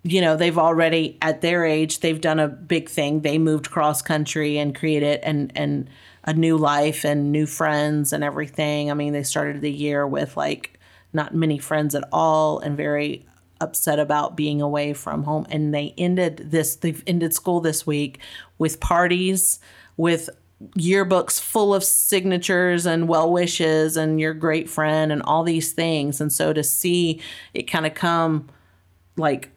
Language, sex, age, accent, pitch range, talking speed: English, female, 40-59, American, 145-165 Hz, 170 wpm